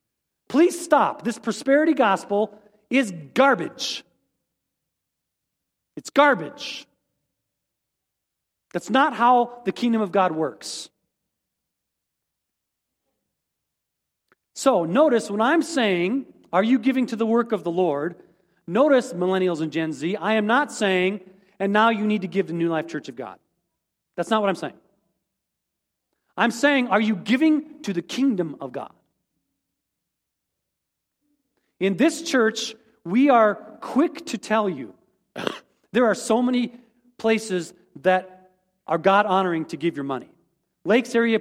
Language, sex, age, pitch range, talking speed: English, male, 40-59, 185-270 Hz, 130 wpm